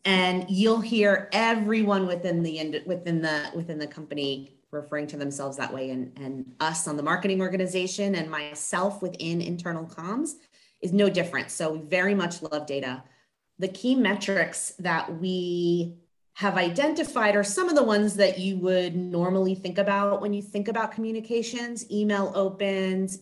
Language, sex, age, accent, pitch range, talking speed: English, female, 30-49, American, 165-200 Hz, 160 wpm